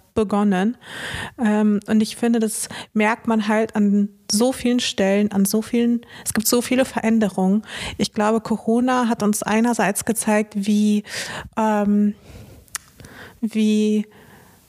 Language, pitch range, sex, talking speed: German, 210-235 Hz, female, 125 wpm